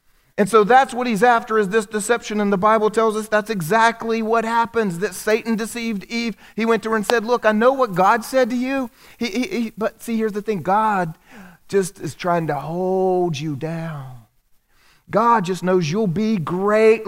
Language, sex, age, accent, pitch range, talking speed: English, male, 40-59, American, 150-220 Hz, 195 wpm